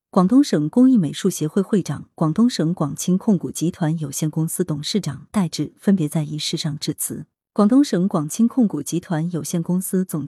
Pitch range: 155-225 Hz